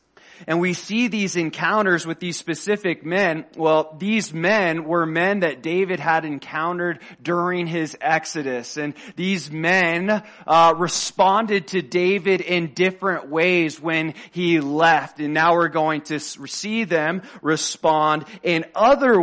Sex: male